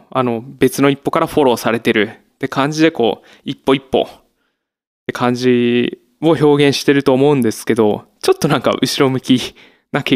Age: 20-39